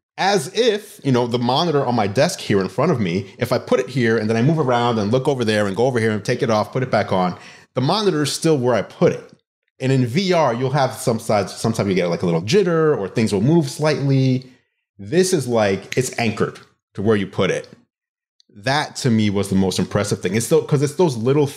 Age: 30-49